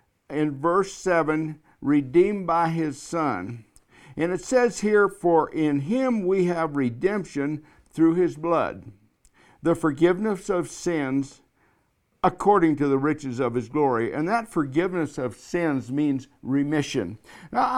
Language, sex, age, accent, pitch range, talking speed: English, male, 60-79, American, 155-185 Hz, 130 wpm